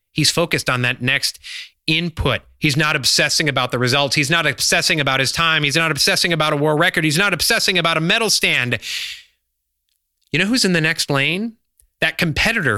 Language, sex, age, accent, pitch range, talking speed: English, male, 30-49, American, 125-180 Hz, 195 wpm